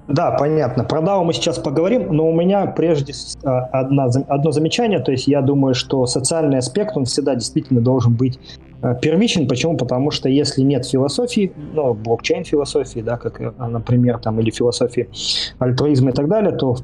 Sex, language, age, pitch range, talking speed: male, Russian, 20-39, 125-160 Hz, 175 wpm